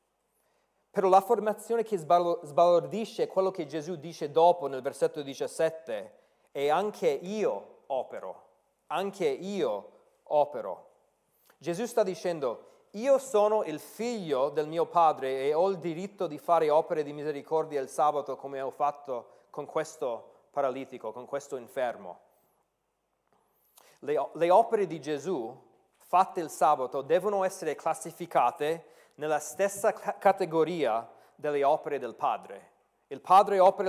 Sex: male